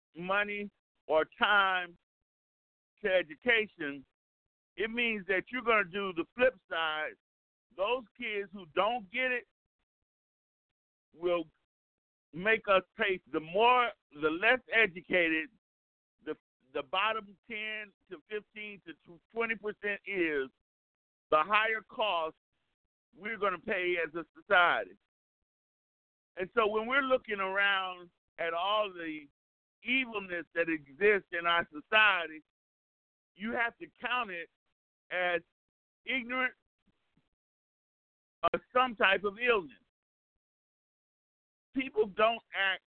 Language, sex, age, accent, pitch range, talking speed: English, male, 50-69, American, 170-225 Hz, 110 wpm